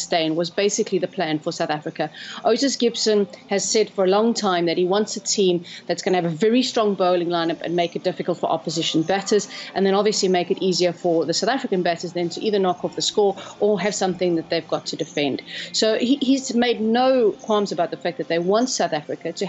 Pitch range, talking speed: 170-215 Hz, 240 wpm